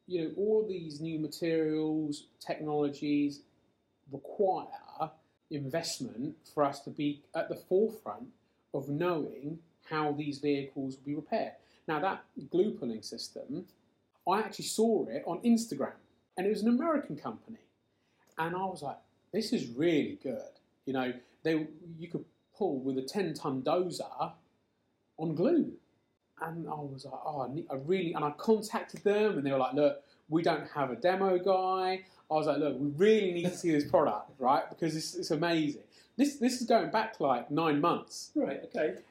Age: 30-49